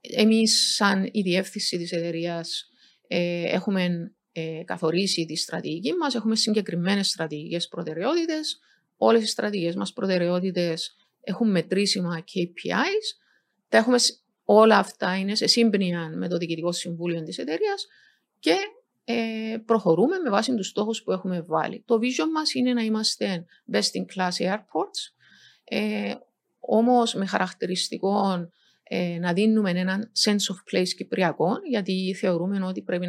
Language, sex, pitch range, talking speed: Greek, female, 175-235 Hz, 130 wpm